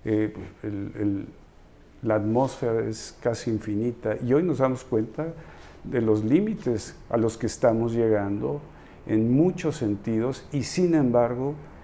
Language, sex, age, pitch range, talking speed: Spanish, male, 50-69, 105-140 Hz, 125 wpm